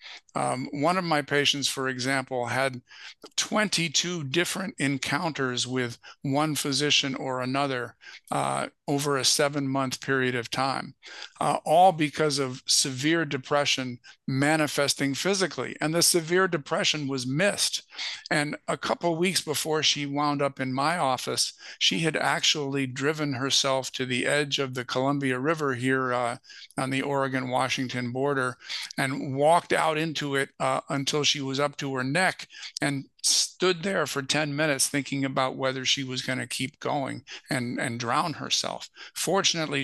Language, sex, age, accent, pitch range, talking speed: English, male, 50-69, American, 130-150 Hz, 150 wpm